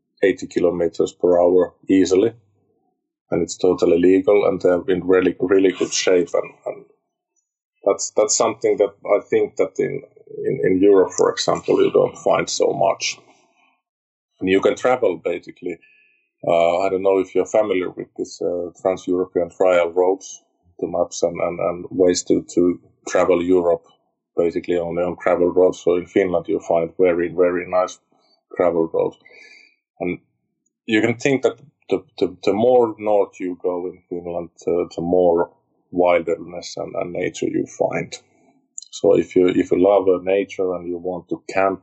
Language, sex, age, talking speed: English, male, 30-49, 165 wpm